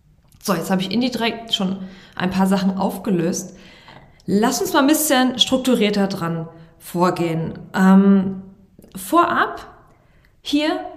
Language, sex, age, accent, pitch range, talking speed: German, female, 20-39, German, 190-280 Hz, 115 wpm